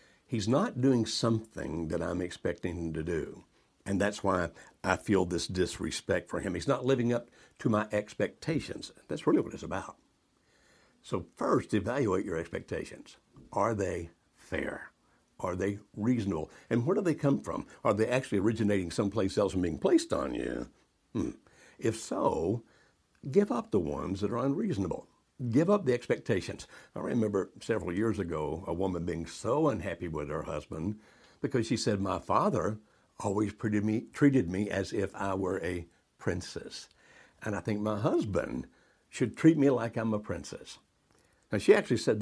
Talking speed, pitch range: 165 wpm, 90-115 Hz